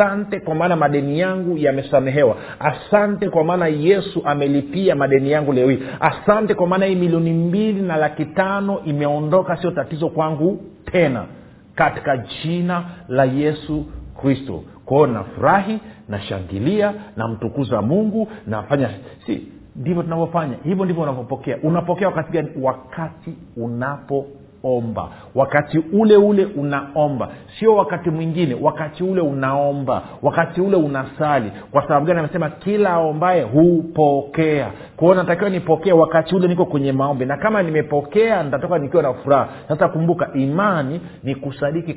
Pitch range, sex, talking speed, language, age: 130-175 Hz, male, 135 wpm, Swahili, 50-69